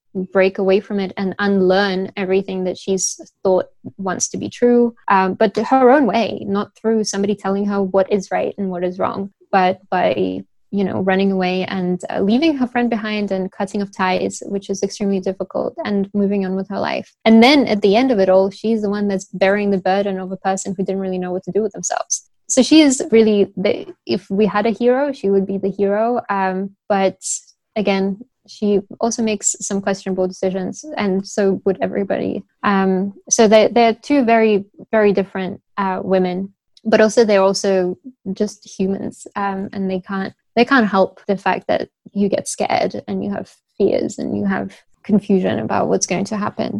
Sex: female